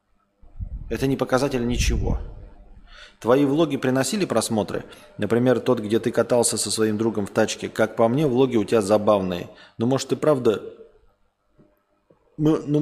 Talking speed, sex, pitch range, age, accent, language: 120 wpm, male, 100-150 Hz, 20-39, native, Russian